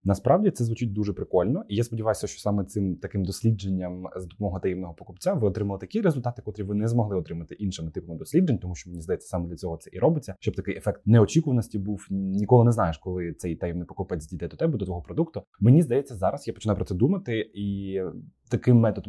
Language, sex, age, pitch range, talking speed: Ukrainian, male, 20-39, 95-120 Hz, 215 wpm